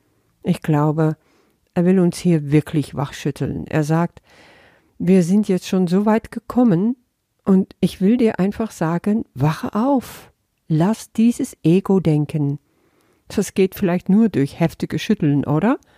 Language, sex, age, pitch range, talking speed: German, female, 50-69, 150-210 Hz, 140 wpm